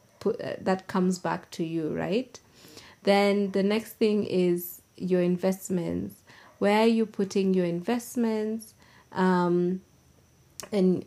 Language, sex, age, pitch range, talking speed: English, female, 20-39, 180-210 Hz, 115 wpm